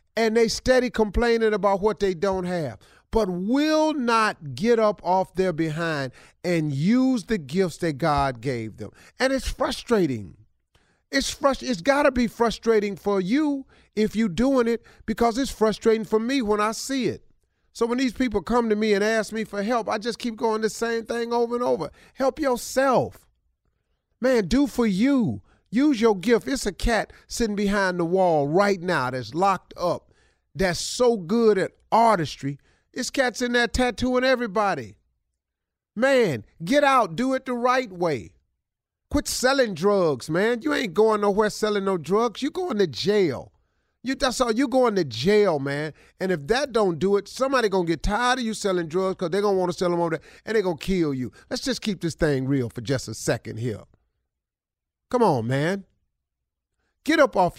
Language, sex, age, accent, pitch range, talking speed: English, male, 40-59, American, 175-245 Hz, 190 wpm